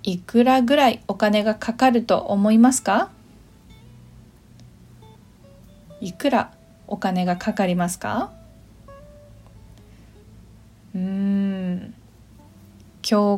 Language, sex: Japanese, female